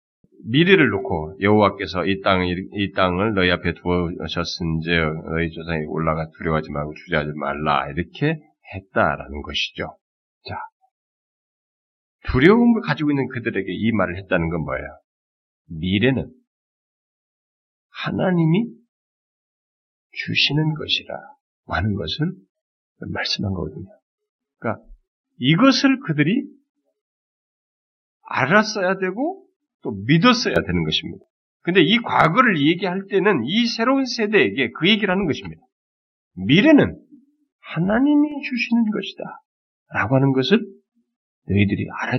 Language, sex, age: Korean, male, 40-59